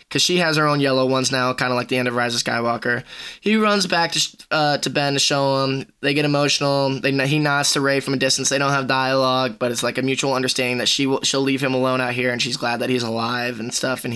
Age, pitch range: 10-29, 130-145 Hz